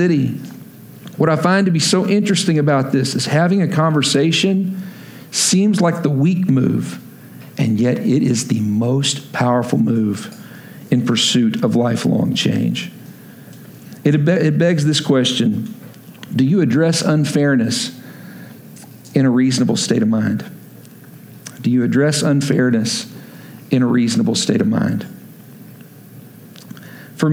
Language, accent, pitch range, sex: English, American, 130-180 Hz, male